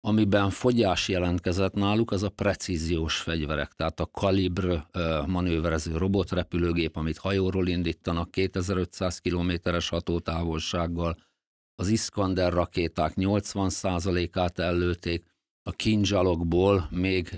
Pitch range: 85-100 Hz